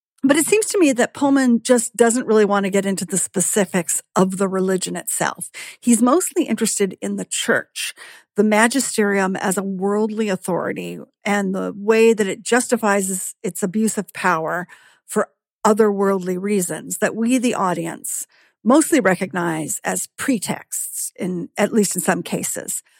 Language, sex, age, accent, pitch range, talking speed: English, female, 50-69, American, 190-235 Hz, 155 wpm